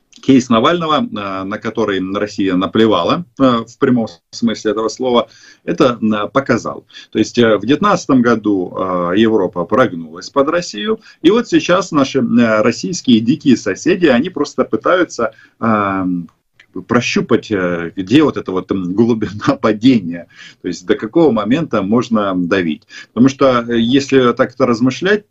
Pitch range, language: 100-130 Hz, Russian